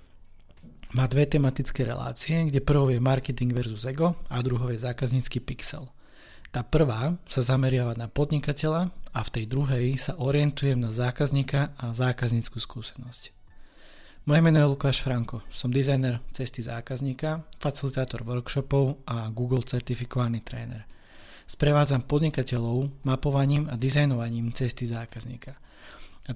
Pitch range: 120-140 Hz